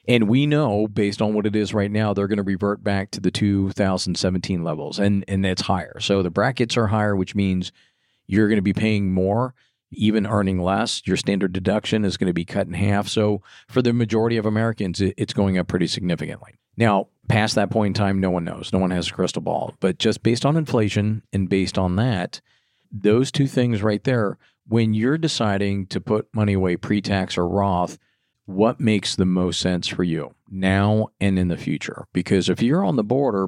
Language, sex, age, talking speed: English, male, 50-69, 210 wpm